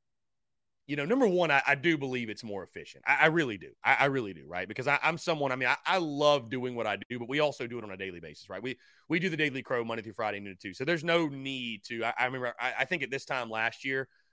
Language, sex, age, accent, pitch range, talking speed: English, male, 30-49, American, 115-155 Hz, 295 wpm